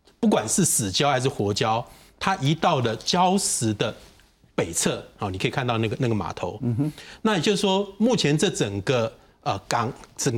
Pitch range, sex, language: 115-165 Hz, male, Chinese